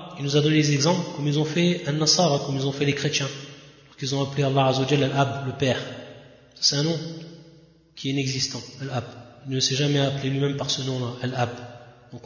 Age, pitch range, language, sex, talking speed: 30-49, 135-155 Hz, French, male, 215 wpm